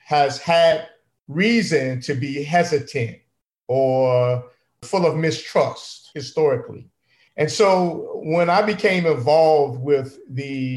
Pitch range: 140-170 Hz